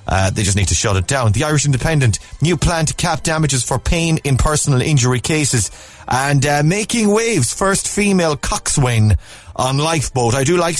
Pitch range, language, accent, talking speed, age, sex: 100-140 Hz, English, Irish, 190 wpm, 30-49, male